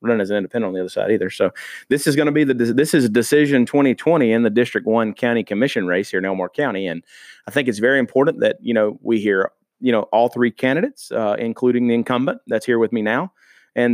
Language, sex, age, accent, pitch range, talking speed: English, male, 30-49, American, 110-130 Hz, 250 wpm